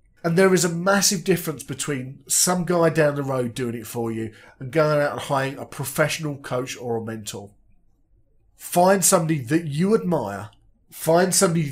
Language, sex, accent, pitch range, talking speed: English, male, British, 125-175 Hz, 175 wpm